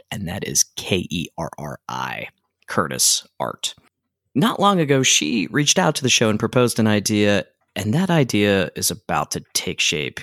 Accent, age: American, 30-49